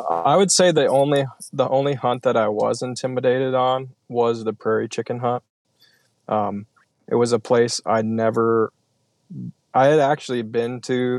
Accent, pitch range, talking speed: American, 115-125 Hz, 160 wpm